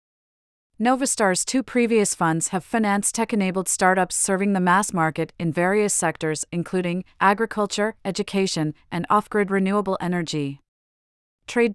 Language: English